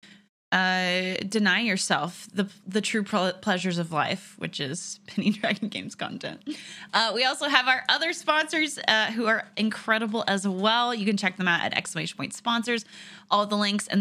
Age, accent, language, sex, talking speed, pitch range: 20-39, American, English, female, 180 wpm, 180-225 Hz